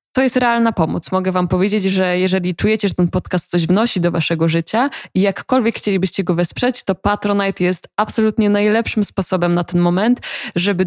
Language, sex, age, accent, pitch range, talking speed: Polish, female, 20-39, native, 180-225 Hz, 180 wpm